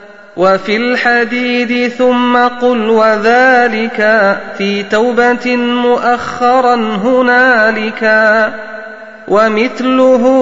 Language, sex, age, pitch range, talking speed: Arabic, male, 30-49, 210-245 Hz, 60 wpm